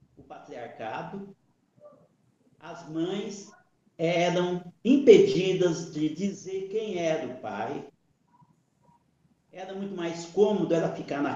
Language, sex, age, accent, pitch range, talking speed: Portuguese, male, 50-69, Brazilian, 160-215 Hz, 95 wpm